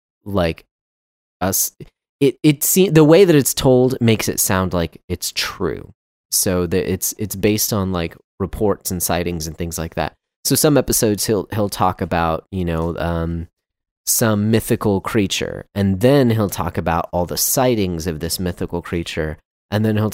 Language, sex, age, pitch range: English, male, 30-49, 85-110 Hz